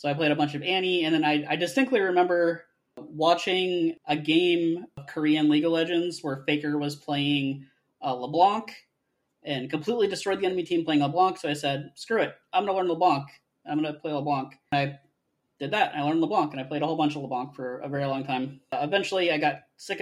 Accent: American